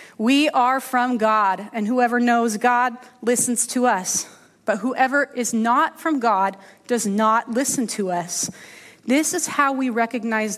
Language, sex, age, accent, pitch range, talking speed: English, female, 30-49, American, 205-250 Hz, 155 wpm